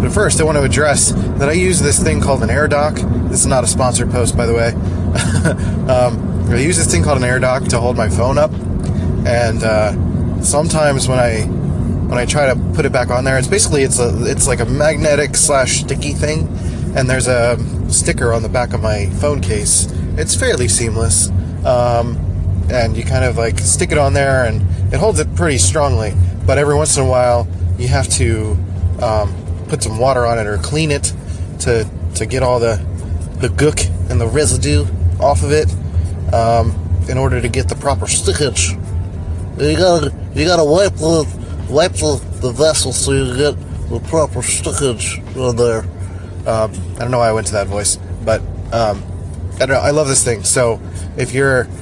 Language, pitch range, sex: English, 90-125 Hz, male